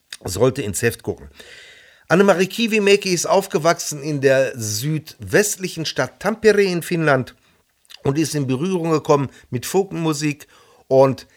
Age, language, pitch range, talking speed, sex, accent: 50-69, English, 120-165 Hz, 120 wpm, male, German